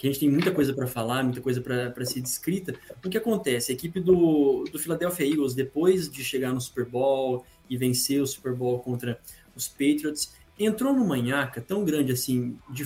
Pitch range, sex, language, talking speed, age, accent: 135-195 Hz, male, Portuguese, 195 wpm, 20-39, Brazilian